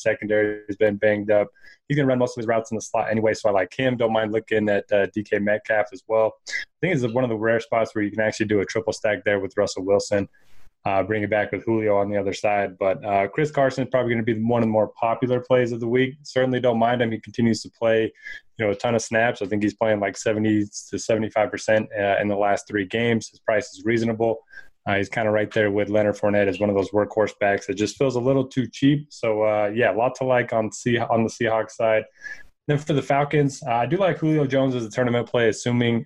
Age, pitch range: 20-39, 105-125 Hz